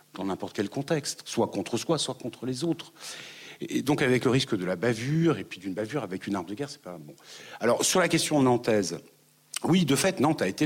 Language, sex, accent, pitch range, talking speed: French, male, French, 105-135 Hz, 235 wpm